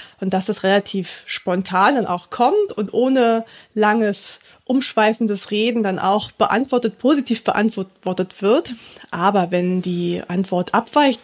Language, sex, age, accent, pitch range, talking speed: English, female, 20-39, German, 190-235 Hz, 130 wpm